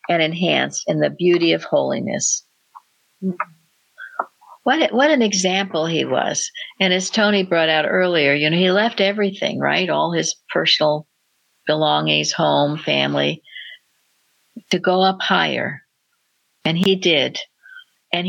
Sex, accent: female, American